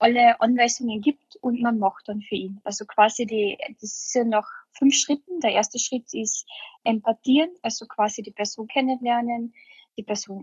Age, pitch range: 10-29, 215-250 Hz